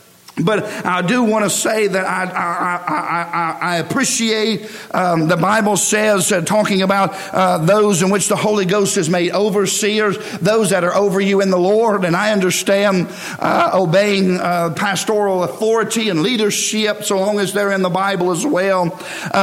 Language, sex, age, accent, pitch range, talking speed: English, male, 50-69, American, 190-215 Hz, 180 wpm